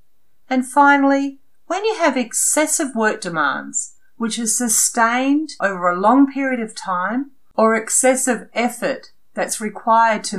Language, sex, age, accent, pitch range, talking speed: English, female, 40-59, Australian, 170-240 Hz, 135 wpm